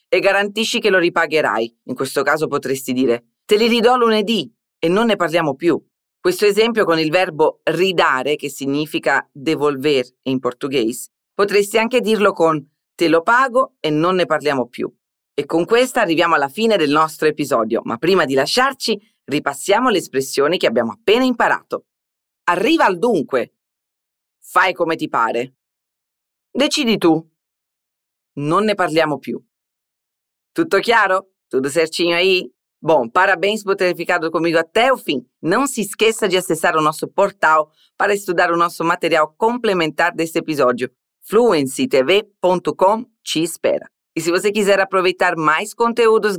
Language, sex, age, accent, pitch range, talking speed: Portuguese, female, 40-59, Italian, 150-210 Hz, 150 wpm